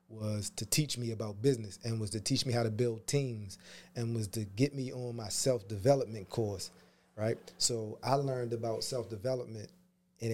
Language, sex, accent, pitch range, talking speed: English, male, American, 110-130 Hz, 180 wpm